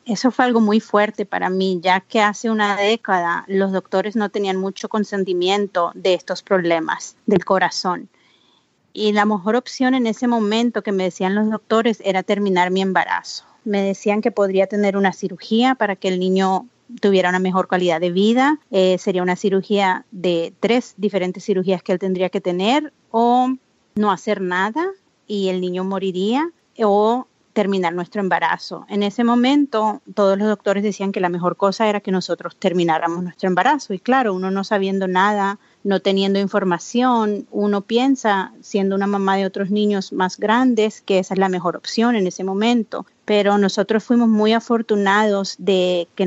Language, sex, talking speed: English, female, 170 wpm